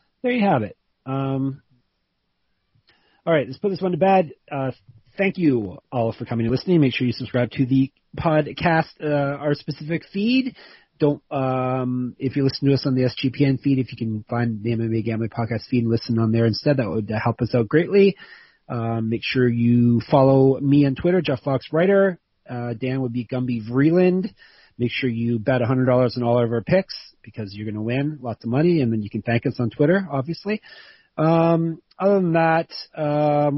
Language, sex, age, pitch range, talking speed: English, male, 30-49, 115-145 Hz, 205 wpm